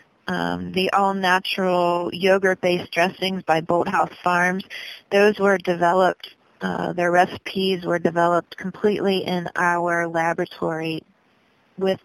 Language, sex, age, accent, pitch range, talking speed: English, female, 40-59, American, 185-220 Hz, 105 wpm